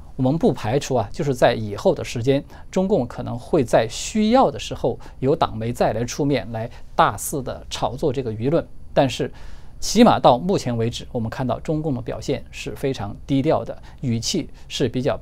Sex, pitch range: male, 110-165 Hz